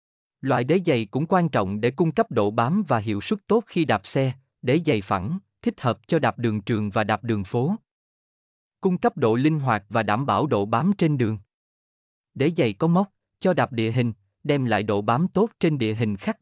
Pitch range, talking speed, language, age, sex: 105-155 Hz, 220 wpm, Vietnamese, 20-39, male